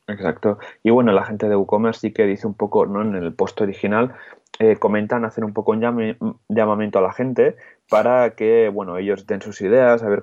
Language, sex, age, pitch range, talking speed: Spanish, male, 20-39, 100-120 Hz, 215 wpm